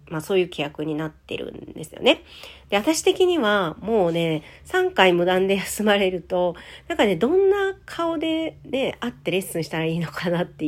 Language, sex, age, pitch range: Japanese, female, 40-59, 155-235 Hz